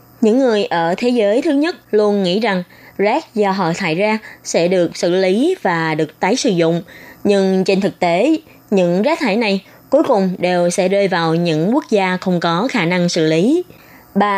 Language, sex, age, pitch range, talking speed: Vietnamese, female, 20-39, 180-235 Hz, 200 wpm